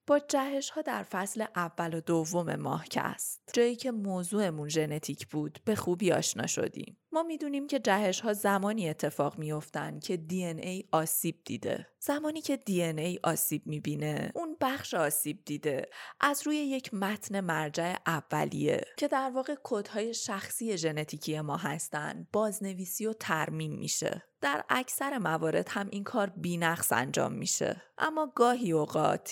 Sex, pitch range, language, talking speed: female, 165-235 Hz, Persian, 160 wpm